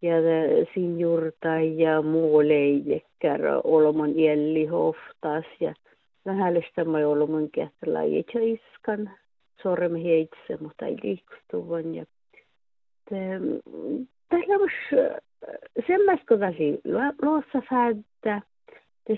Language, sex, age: Finnish, female, 50-69